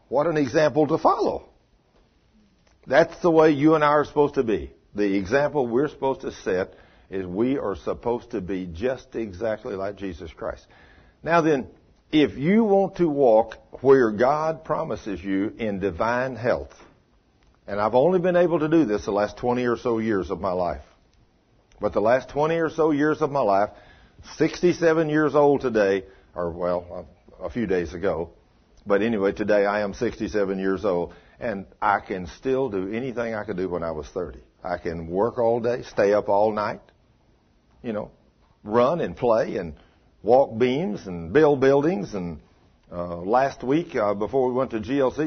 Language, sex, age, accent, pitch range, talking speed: English, male, 60-79, American, 100-145 Hz, 180 wpm